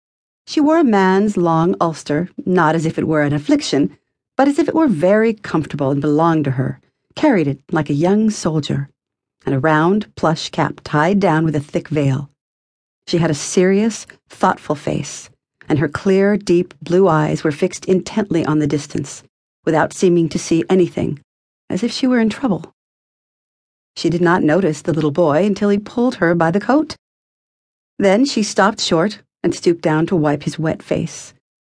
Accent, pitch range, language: American, 155-235 Hz, English